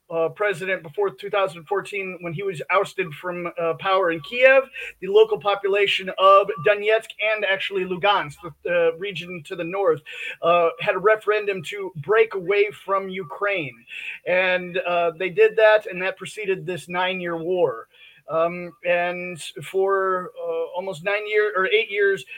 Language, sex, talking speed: English, male, 155 wpm